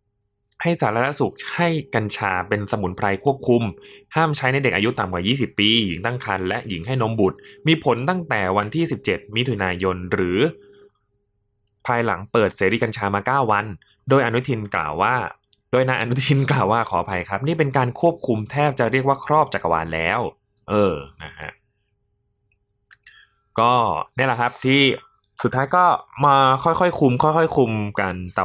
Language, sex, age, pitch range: Thai, male, 20-39, 100-135 Hz